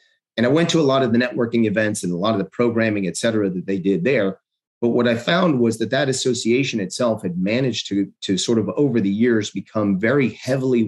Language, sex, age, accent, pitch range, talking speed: English, male, 40-59, American, 95-120 Hz, 235 wpm